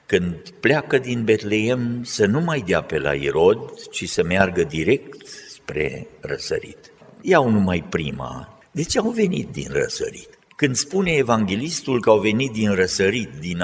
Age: 60-79